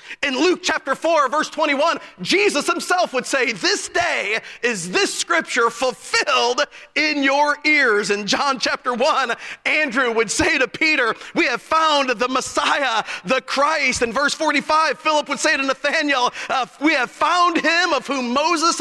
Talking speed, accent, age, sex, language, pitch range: 165 wpm, American, 40-59, male, English, 280-355 Hz